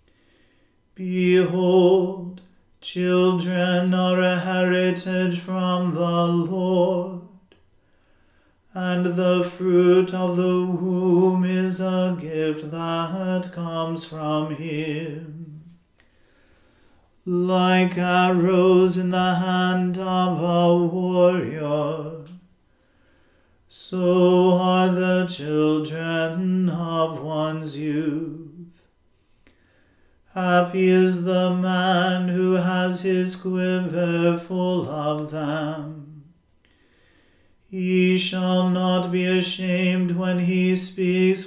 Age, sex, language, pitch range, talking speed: 40-59, male, English, 160-185 Hz, 80 wpm